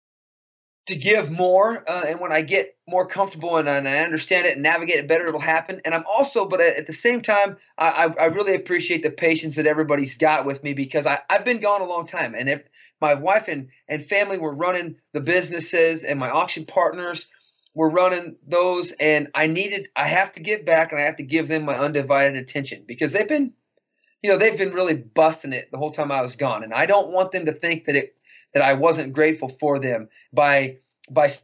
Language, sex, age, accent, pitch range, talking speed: English, male, 30-49, American, 140-175 Hz, 220 wpm